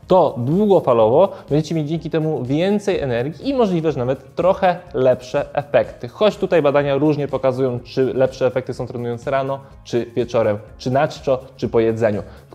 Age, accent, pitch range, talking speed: 20-39, native, 130-165 Hz, 165 wpm